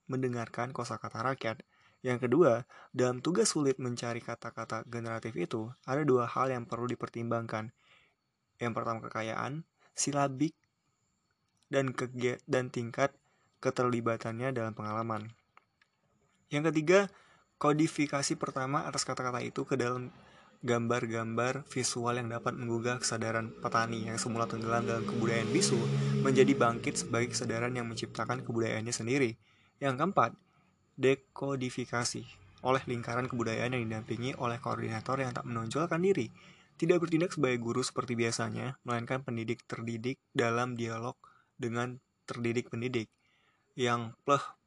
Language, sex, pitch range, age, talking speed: Indonesian, male, 115-130 Hz, 20-39, 115 wpm